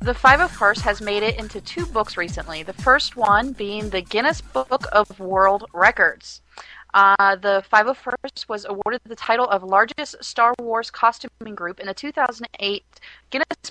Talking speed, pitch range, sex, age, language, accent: 160 wpm, 195-245 Hz, female, 30-49, English, American